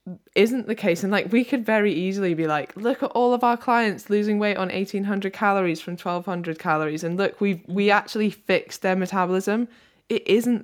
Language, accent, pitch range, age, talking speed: English, British, 155-190 Hz, 10-29, 195 wpm